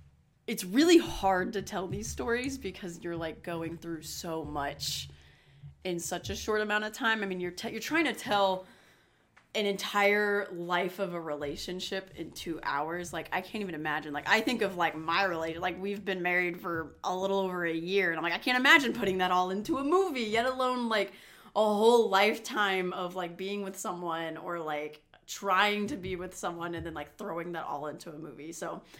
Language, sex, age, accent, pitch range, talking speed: English, female, 20-39, American, 165-200 Hz, 205 wpm